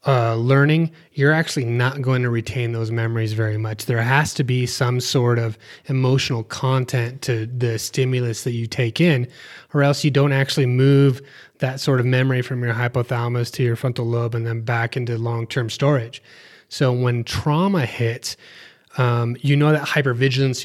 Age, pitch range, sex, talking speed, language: 30-49, 120-140 Hz, male, 175 wpm, English